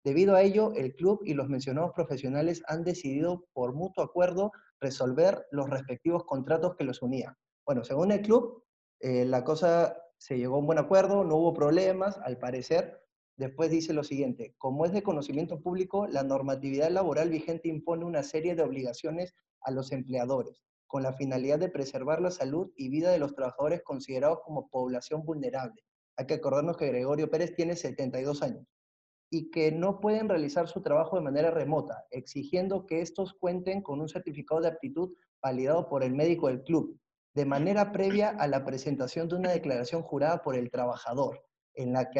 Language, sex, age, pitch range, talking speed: Spanish, male, 20-39, 135-180 Hz, 180 wpm